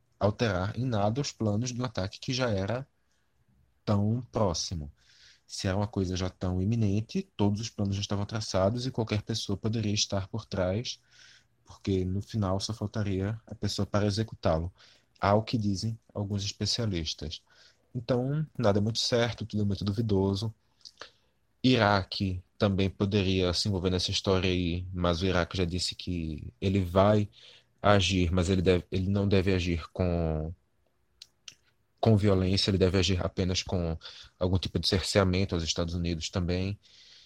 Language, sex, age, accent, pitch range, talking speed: Portuguese, male, 20-39, Brazilian, 90-105 Hz, 155 wpm